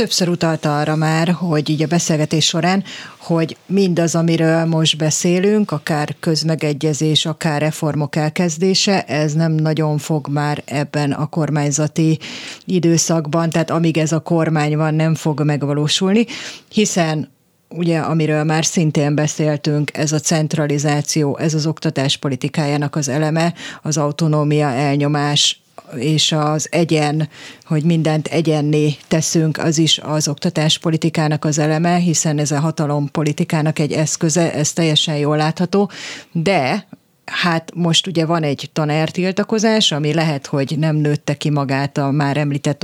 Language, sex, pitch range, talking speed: Hungarian, female, 150-165 Hz, 135 wpm